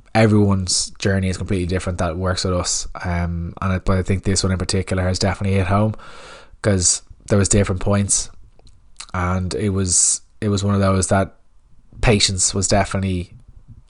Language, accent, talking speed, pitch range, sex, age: English, Irish, 175 wpm, 95-105 Hz, male, 20-39